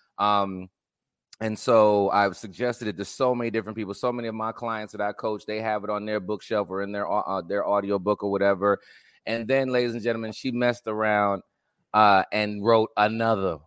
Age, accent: 30-49, American